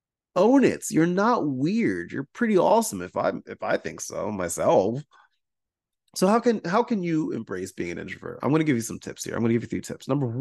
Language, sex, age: English, male, 30-49